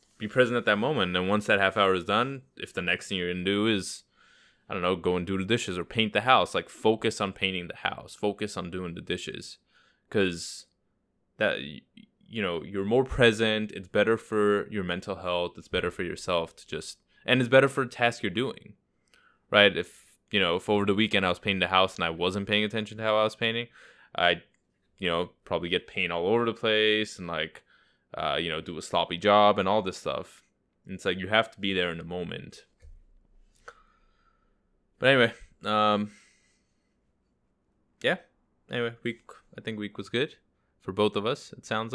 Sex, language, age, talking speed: male, English, 10-29, 205 wpm